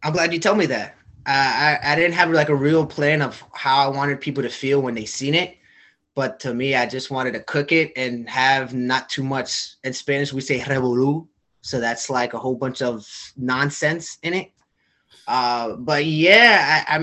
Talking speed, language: 210 wpm, English